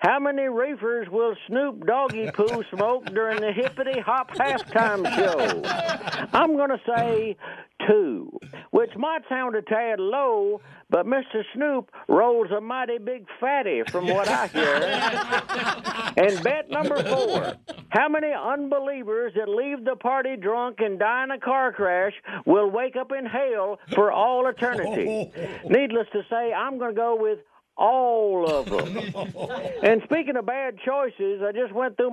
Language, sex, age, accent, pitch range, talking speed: English, male, 60-79, American, 220-265 Hz, 155 wpm